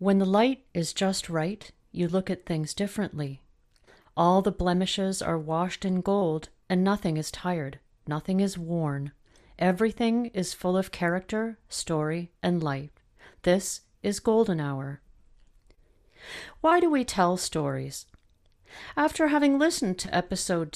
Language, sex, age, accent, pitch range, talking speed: English, female, 40-59, American, 150-220 Hz, 135 wpm